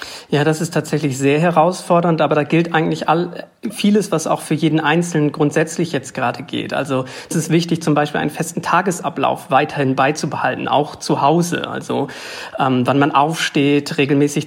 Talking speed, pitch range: 165 wpm, 145-170 Hz